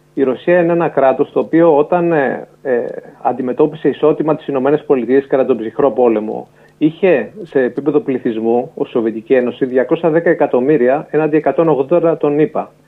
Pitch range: 125-160 Hz